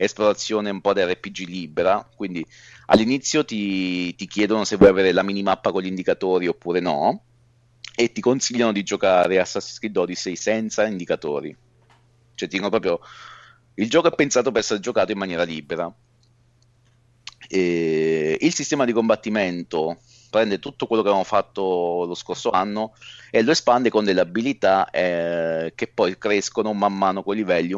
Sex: male